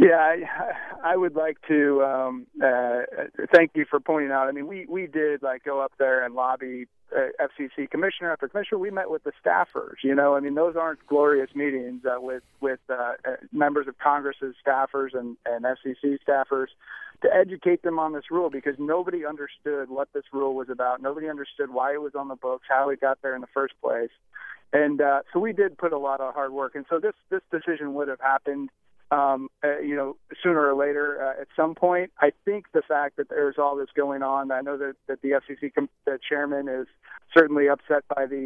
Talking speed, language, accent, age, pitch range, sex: 215 wpm, English, American, 40-59, 135-150 Hz, male